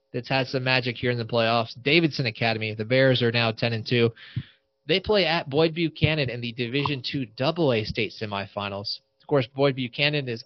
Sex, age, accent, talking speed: male, 20-39, American, 200 wpm